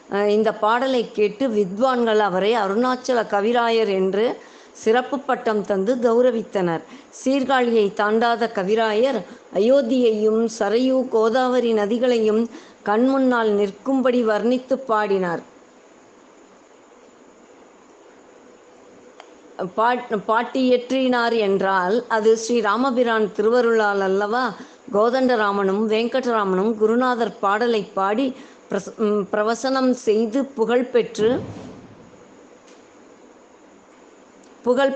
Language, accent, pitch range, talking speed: Tamil, native, 215-250 Hz, 70 wpm